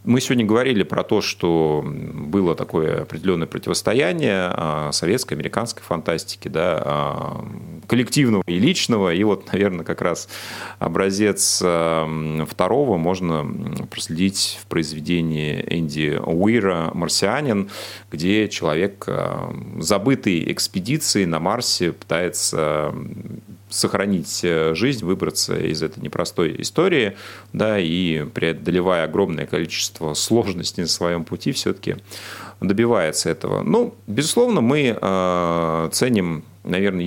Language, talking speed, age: Russian, 100 wpm, 30-49